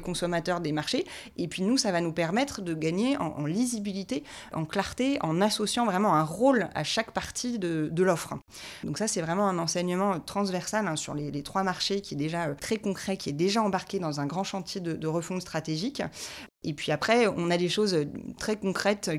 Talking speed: 215 wpm